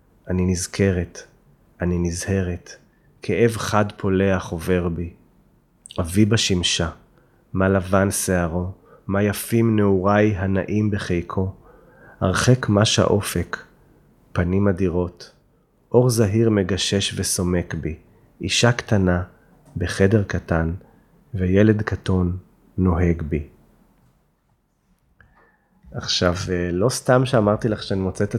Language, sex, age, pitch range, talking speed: Hebrew, male, 30-49, 90-110 Hz, 95 wpm